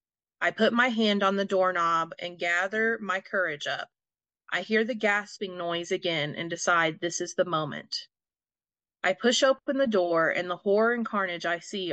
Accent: American